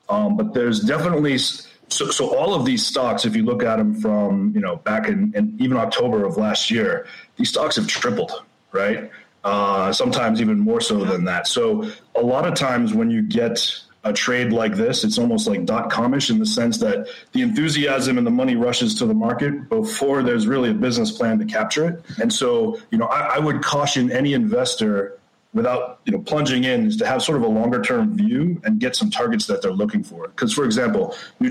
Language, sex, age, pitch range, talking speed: English, male, 30-49, 170-235 Hz, 215 wpm